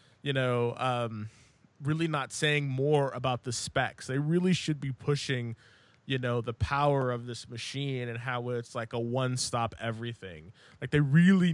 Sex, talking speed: male, 170 wpm